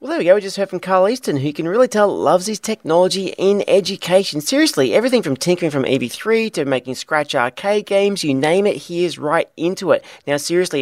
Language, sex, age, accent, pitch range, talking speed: English, male, 30-49, Australian, 130-185 Hz, 225 wpm